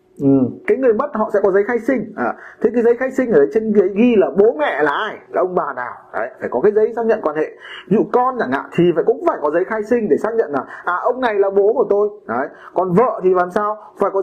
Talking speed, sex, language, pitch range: 300 wpm, male, Vietnamese, 175-240 Hz